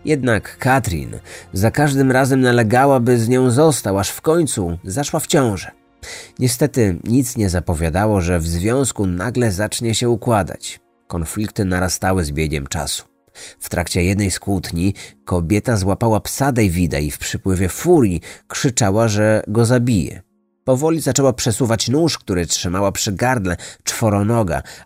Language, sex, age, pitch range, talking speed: Polish, male, 30-49, 95-125 Hz, 140 wpm